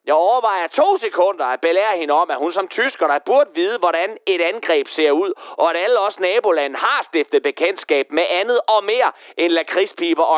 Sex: male